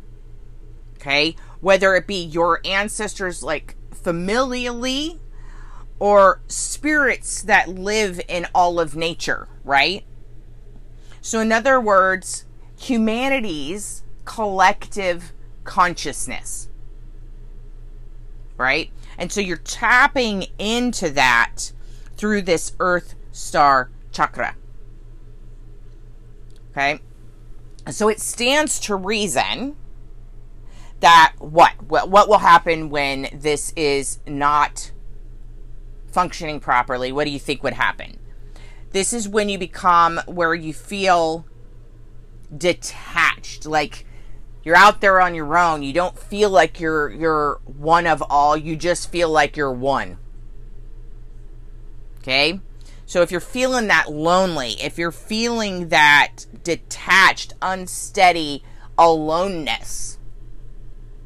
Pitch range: 115-180 Hz